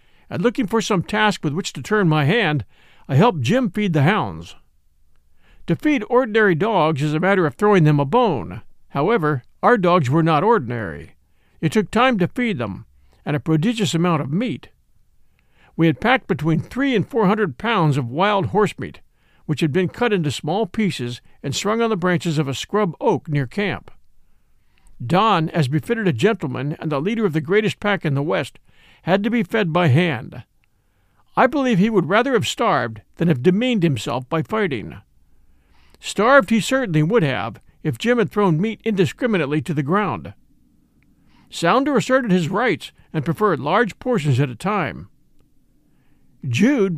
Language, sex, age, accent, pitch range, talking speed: English, male, 50-69, American, 140-210 Hz, 175 wpm